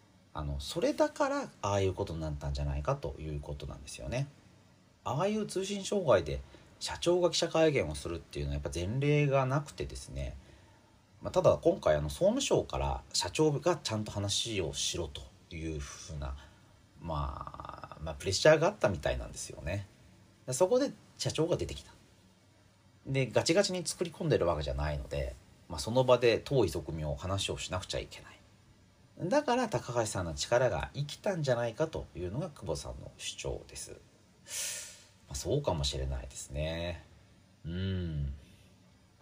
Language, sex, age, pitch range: Japanese, male, 40-59, 80-125 Hz